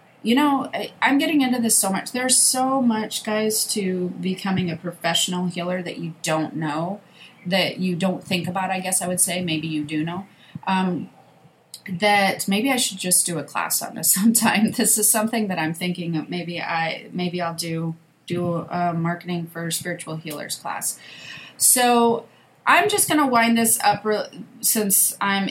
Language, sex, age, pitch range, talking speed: English, female, 30-49, 175-215 Hz, 180 wpm